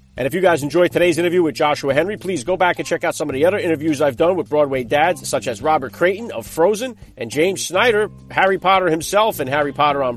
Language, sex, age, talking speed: English, male, 40-59, 250 wpm